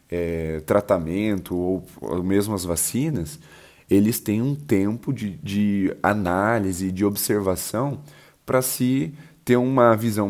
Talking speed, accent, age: 130 wpm, Brazilian, 20-39